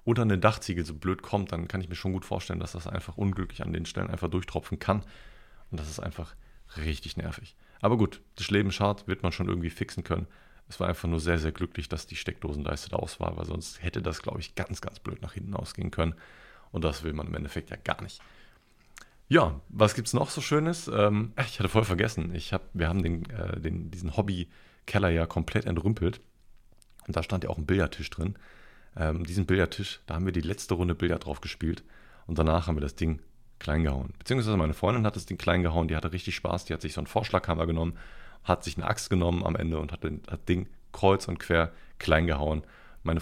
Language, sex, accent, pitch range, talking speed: German, male, German, 85-100 Hz, 225 wpm